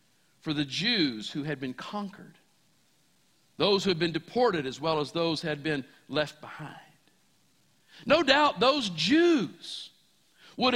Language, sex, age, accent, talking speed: English, male, 50-69, American, 145 wpm